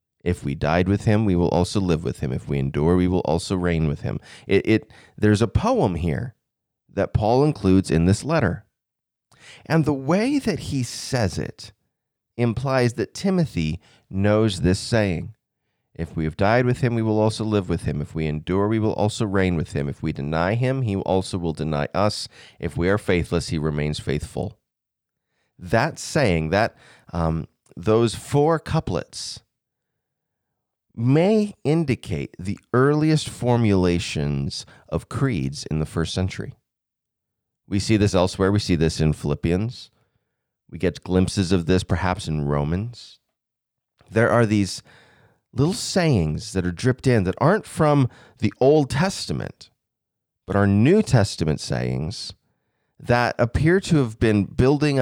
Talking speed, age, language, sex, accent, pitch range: 155 wpm, 30-49, English, male, American, 90-125 Hz